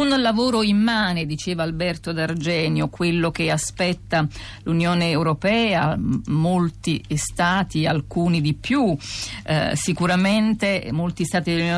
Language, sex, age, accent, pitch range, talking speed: Italian, female, 50-69, native, 155-200 Hz, 105 wpm